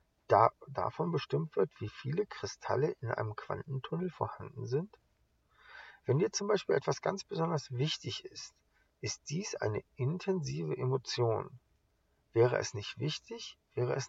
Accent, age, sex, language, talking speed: German, 40-59, male, English, 130 wpm